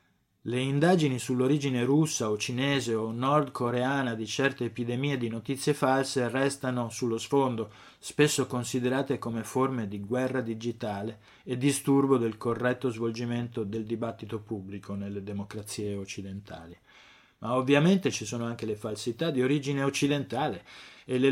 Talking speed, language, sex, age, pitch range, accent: 130 wpm, Italian, male, 20-39, 115-140 Hz, native